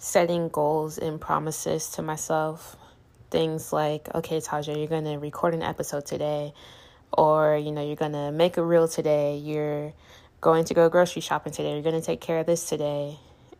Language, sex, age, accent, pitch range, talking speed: English, female, 10-29, American, 150-170 Hz, 185 wpm